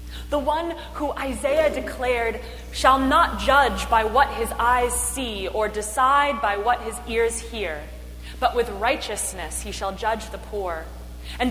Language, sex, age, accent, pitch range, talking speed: English, female, 20-39, American, 210-275 Hz, 150 wpm